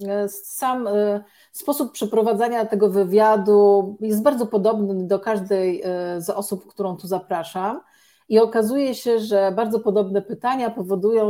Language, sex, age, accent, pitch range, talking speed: Polish, female, 40-59, native, 185-220 Hz, 120 wpm